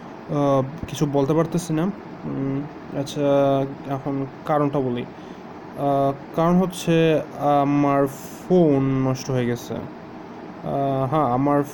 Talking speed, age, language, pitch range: 55 wpm, 20-39, Bengali, 135-150 Hz